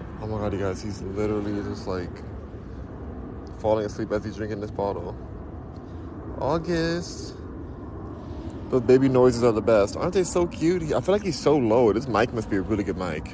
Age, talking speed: 20-39, 190 wpm